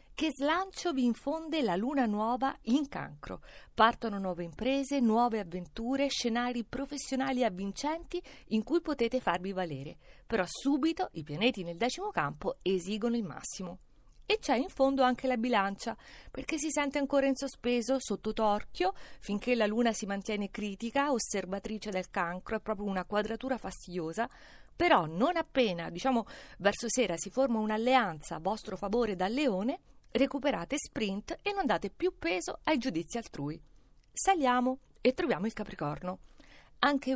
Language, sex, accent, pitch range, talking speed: Italian, female, native, 200-275 Hz, 145 wpm